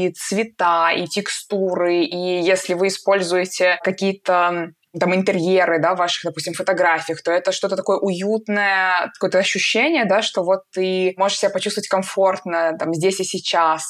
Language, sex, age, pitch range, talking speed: Russian, female, 20-39, 175-205 Hz, 145 wpm